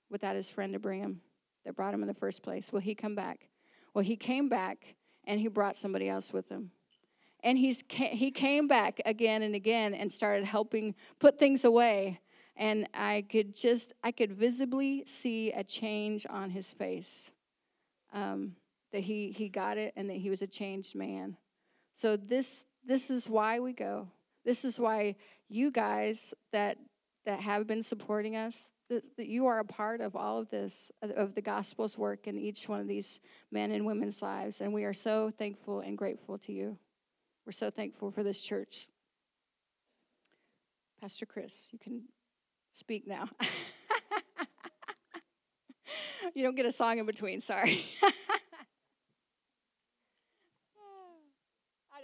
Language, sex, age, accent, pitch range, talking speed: English, female, 40-59, American, 200-255 Hz, 160 wpm